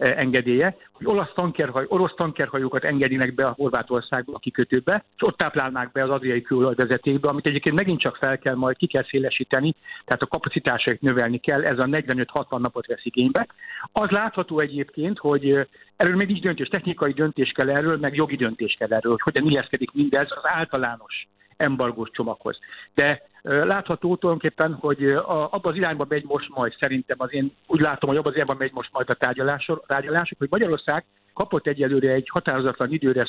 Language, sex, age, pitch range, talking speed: Hungarian, male, 60-79, 130-170 Hz, 175 wpm